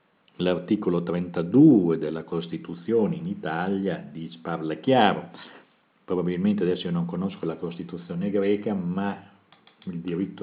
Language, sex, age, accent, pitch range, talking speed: Italian, male, 50-69, native, 85-105 Hz, 110 wpm